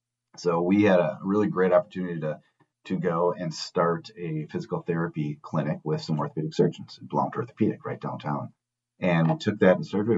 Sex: male